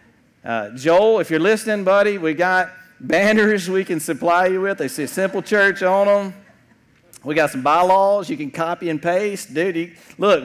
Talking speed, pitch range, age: 180 wpm, 140-200 Hz, 50-69